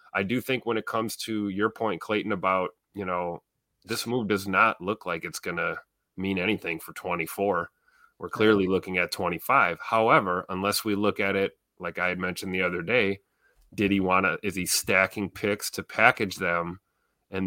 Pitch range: 90-110 Hz